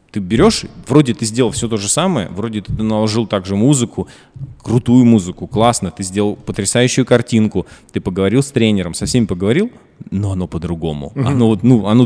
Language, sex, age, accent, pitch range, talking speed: Russian, male, 20-39, native, 90-115 Hz, 175 wpm